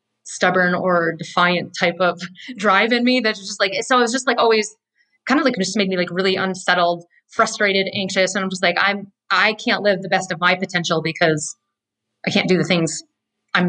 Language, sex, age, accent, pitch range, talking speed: English, female, 30-49, American, 175-220 Hz, 210 wpm